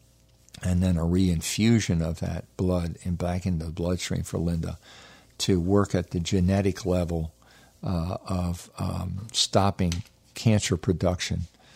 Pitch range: 90-110 Hz